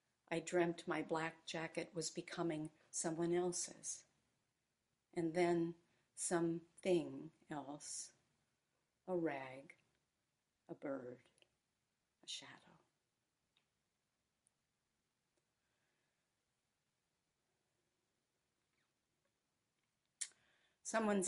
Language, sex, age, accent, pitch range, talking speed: English, female, 60-79, American, 165-190 Hz, 55 wpm